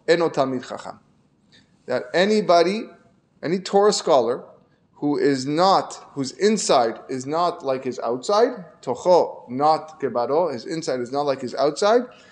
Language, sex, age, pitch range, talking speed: English, male, 20-39, 135-180 Hz, 125 wpm